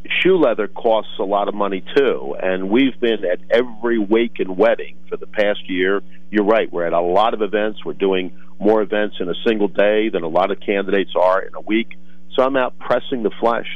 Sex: male